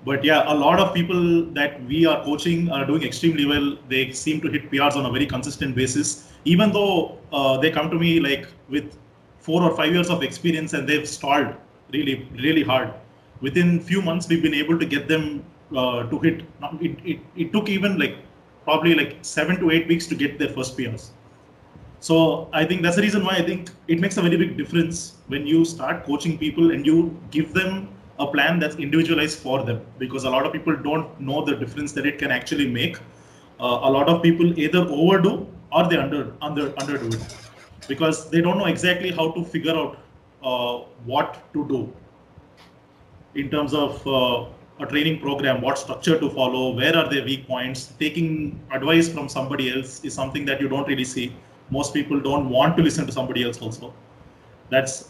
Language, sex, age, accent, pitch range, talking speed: Hindi, male, 30-49, native, 135-165 Hz, 200 wpm